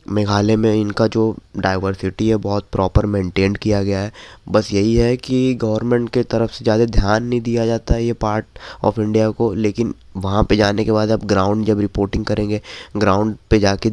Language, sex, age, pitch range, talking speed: Hindi, male, 20-39, 100-110 Hz, 195 wpm